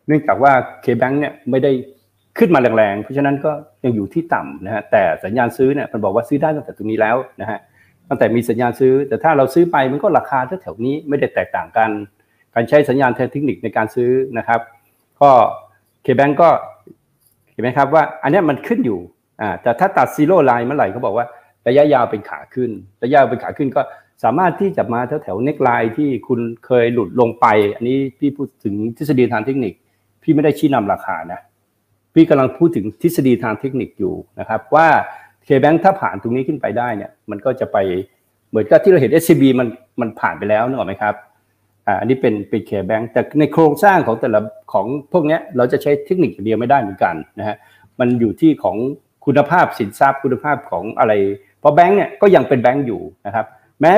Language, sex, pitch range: Thai, male, 115-145 Hz